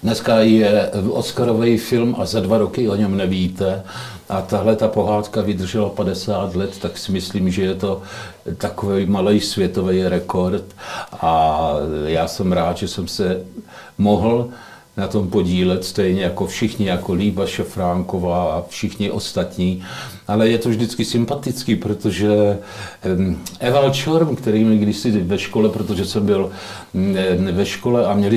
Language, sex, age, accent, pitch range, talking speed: Czech, male, 60-79, native, 95-120 Hz, 145 wpm